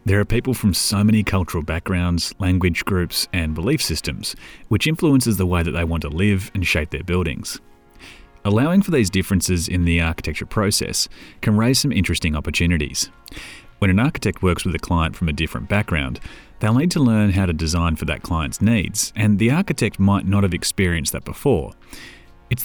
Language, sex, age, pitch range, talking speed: English, male, 30-49, 85-110 Hz, 190 wpm